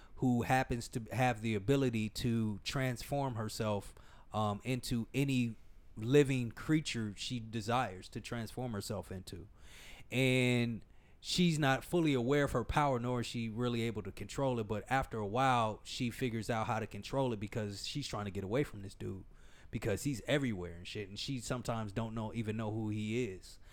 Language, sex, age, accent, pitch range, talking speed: English, male, 30-49, American, 105-130 Hz, 180 wpm